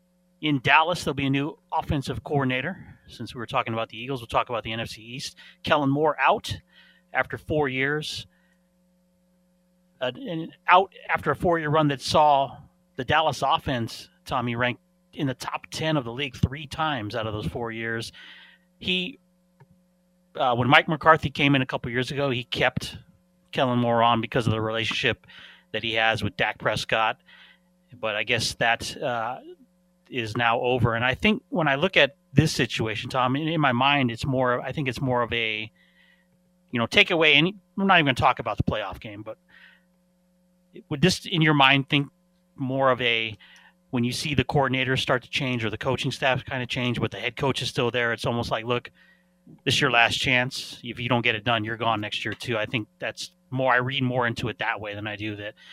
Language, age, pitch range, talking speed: English, 30-49, 120-170 Hz, 205 wpm